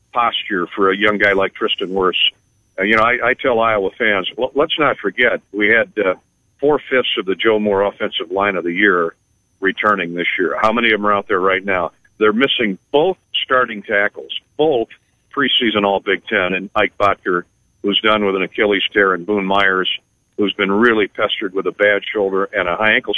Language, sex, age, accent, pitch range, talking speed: English, male, 50-69, American, 100-115 Hz, 200 wpm